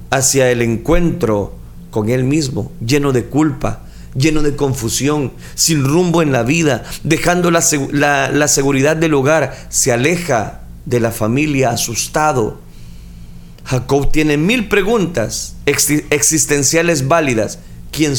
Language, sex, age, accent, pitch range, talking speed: Spanish, male, 40-59, Mexican, 130-165 Hz, 120 wpm